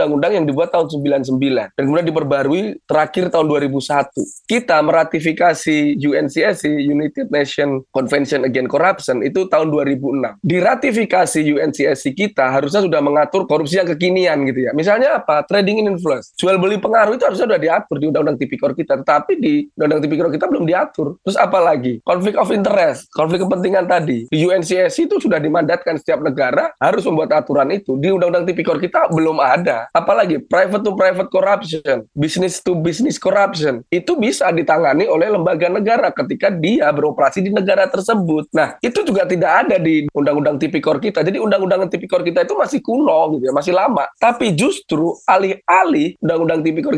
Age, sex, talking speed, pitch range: 20-39, male, 160 wpm, 150-195 Hz